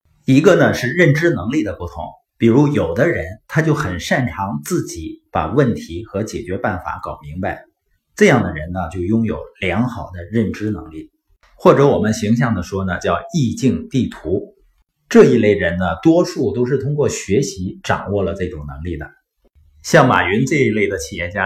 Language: Chinese